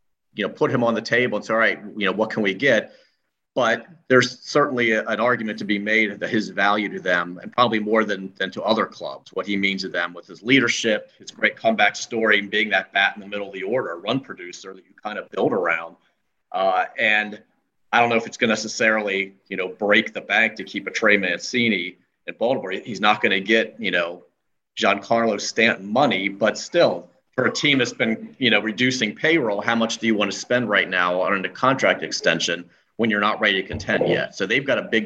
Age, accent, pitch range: 40-59, American, 100-115 Hz